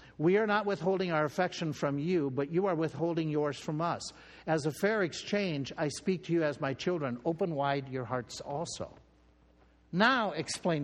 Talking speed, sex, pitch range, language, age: 185 wpm, male, 125-175 Hz, English, 60-79